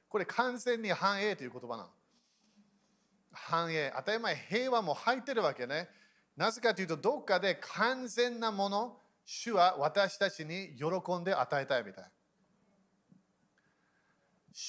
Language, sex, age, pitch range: Japanese, male, 40-59, 150-200 Hz